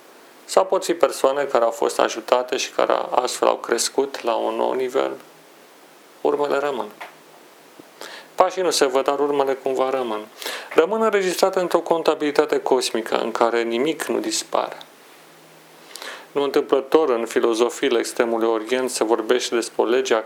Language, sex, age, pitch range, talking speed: Romanian, male, 40-59, 120-165 Hz, 140 wpm